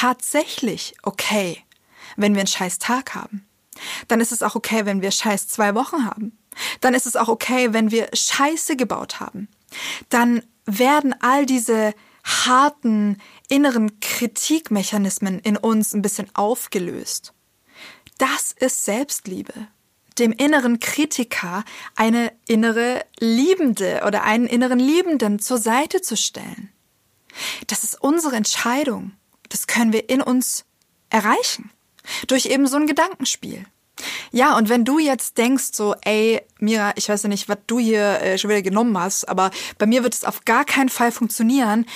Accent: German